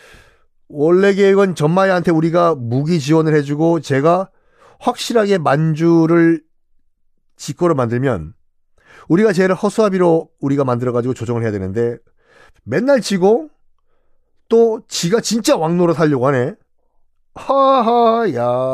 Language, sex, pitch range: Korean, male, 120-195 Hz